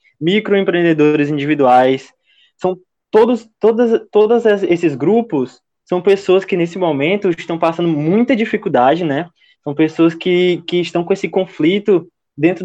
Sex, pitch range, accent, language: male, 150-195 Hz, Brazilian, Portuguese